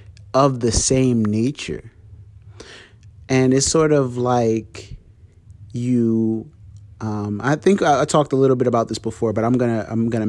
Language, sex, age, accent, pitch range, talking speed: English, male, 30-49, American, 100-125 Hz, 155 wpm